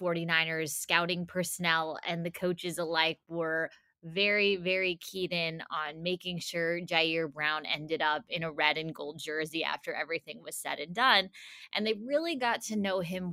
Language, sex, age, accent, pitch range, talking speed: English, female, 20-39, American, 165-195 Hz, 170 wpm